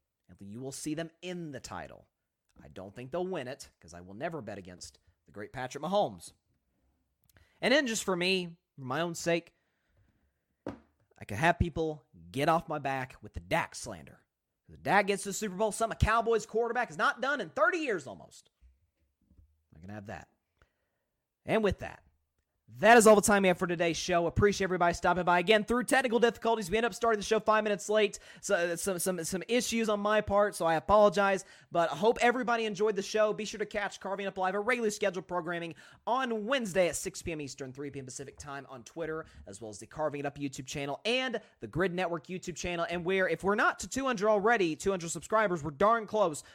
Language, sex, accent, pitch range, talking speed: English, male, American, 140-210 Hz, 215 wpm